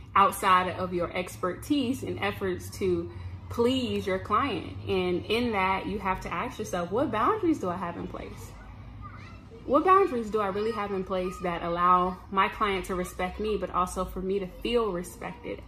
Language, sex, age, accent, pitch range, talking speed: English, female, 20-39, American, 170-205 Hz, 180 wpm